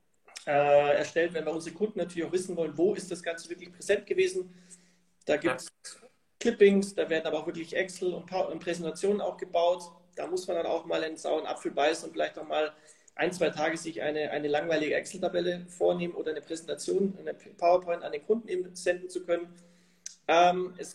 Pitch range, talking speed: 165-185 Hz, 190 wpm